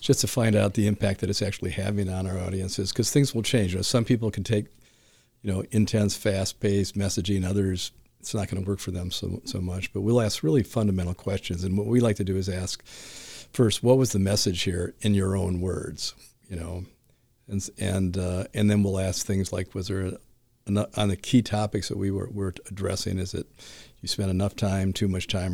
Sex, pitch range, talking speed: male, 95-110 Hz, 225 wpm